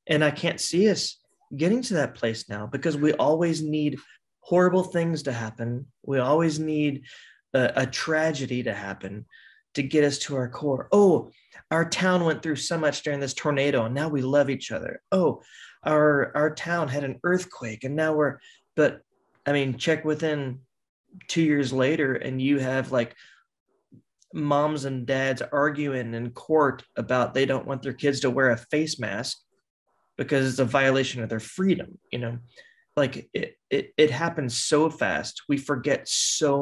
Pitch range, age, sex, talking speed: 130-155 Hz, 20-39, male, 175 wpm